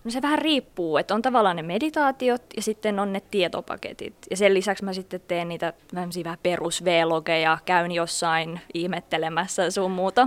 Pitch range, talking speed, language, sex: 180-235 Hz, 165 wpm, Finnish, female